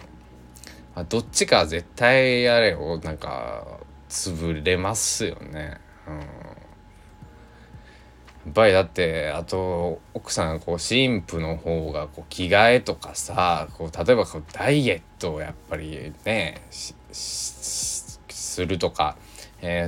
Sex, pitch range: male, 75-90 Hz